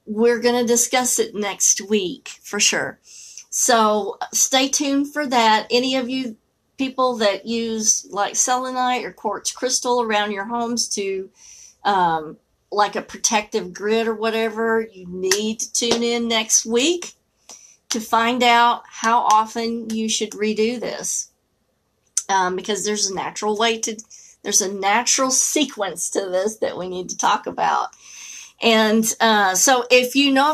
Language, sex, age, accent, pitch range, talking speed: English, female, 40-59, American, 220-255 Hz, 150 wpm